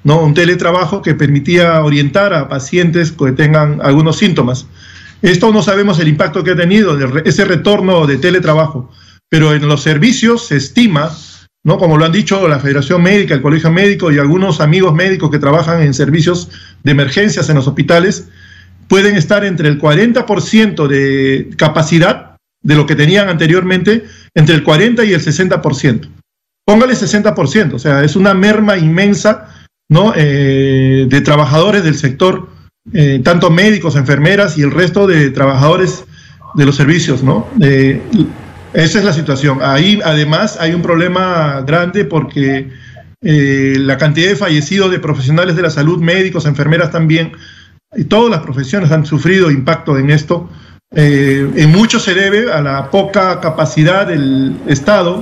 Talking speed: 160 wpm